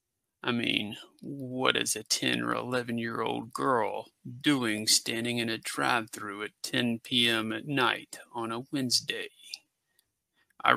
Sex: male